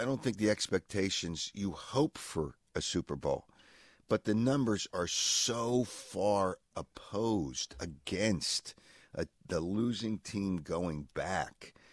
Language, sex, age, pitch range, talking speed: English, male, 50-69, 85-105 Hz, 120 wpm